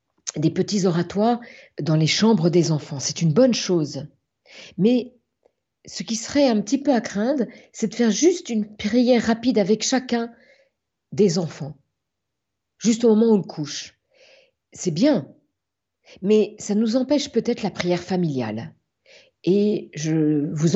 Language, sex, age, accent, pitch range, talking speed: French, female, 50-69, French, 175-230 Hz, 145 wpm